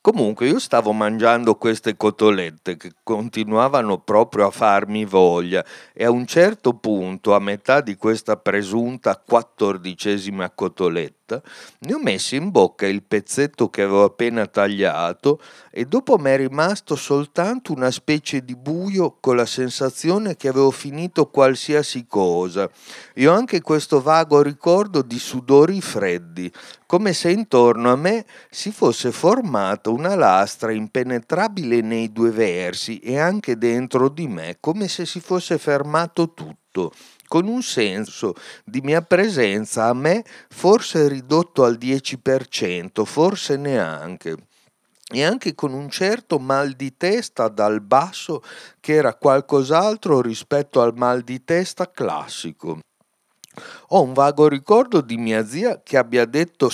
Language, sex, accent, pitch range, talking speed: Italian, male, native, 115-155 Hz, 135 wpm